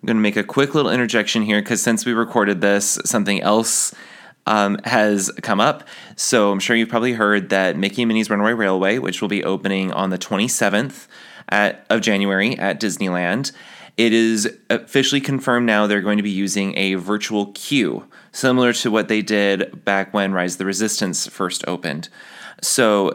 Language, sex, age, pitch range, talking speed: English, male, 20-39, 100-115 Hz, 180 wpm